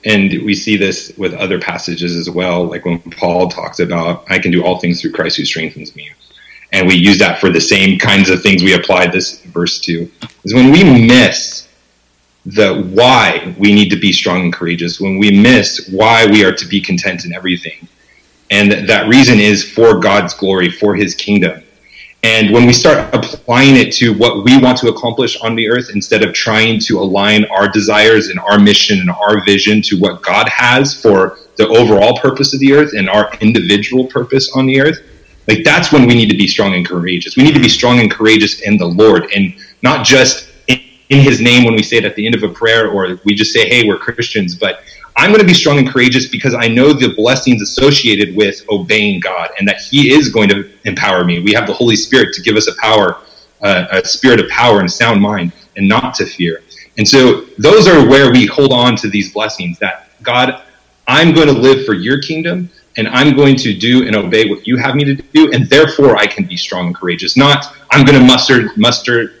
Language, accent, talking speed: English, American, 220 wpm